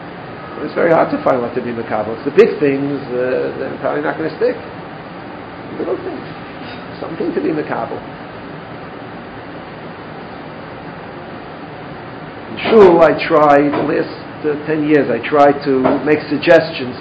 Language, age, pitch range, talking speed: English, 50-69, 135-190 Hz, 145 wpm